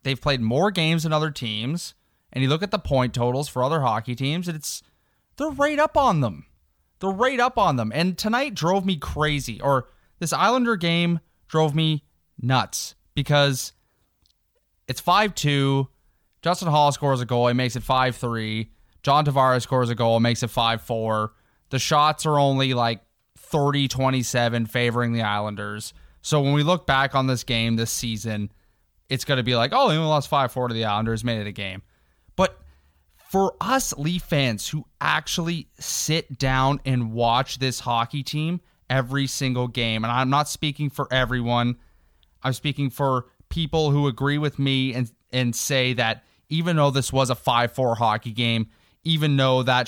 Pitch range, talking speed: 115-150 Hz, 170 wpm